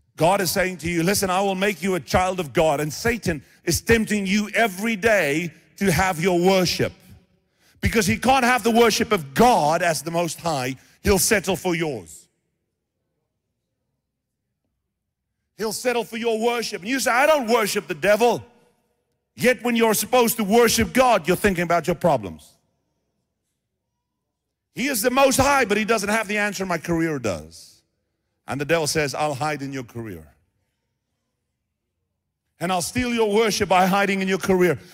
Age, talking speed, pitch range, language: 50-69, 170 wpm, 145-220 Hz, English